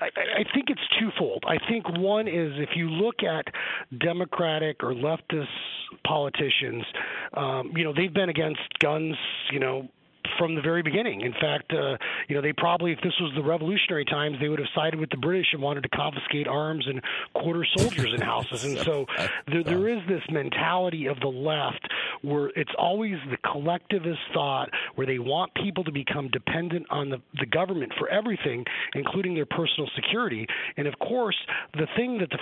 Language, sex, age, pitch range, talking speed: English, male, 40-59, 145-180 Hz, 185 wpm